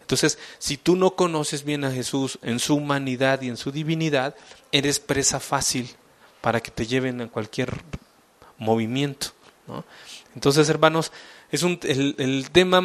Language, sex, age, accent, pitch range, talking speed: English, male, 40-59, Mexican, 125-160 Hz, 155 wpm